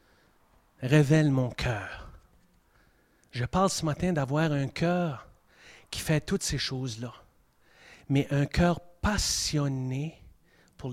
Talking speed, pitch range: 110 wpm, 105-165 Hz